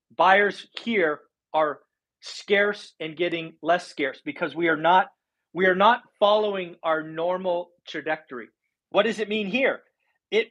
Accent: American